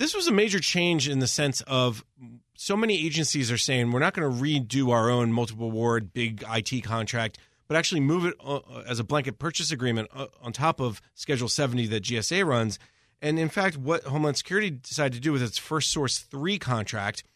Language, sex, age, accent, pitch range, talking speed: English, male, 30-49, American, 115-150 Hz, 200 wpm